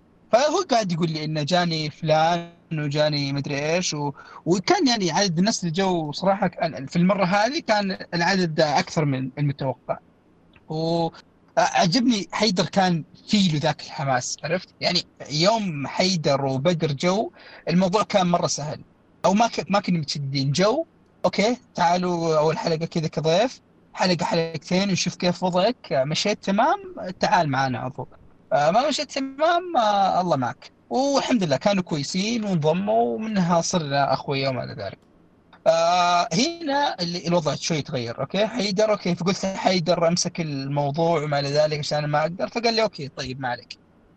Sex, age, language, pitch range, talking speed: male, 30-49, Arabic, 155-210 Hz, 145 wpm